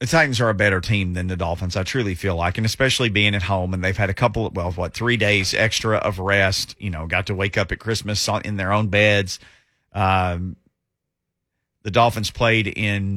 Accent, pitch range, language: American, 95-115 Hz, English